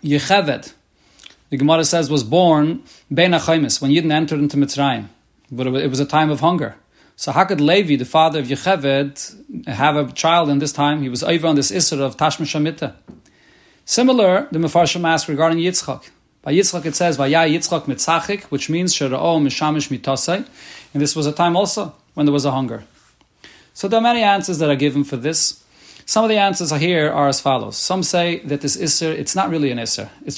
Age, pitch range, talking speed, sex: 30-49, 140-175 Hz, 190 wpm, male